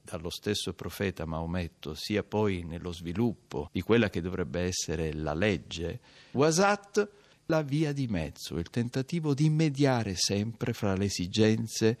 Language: Italian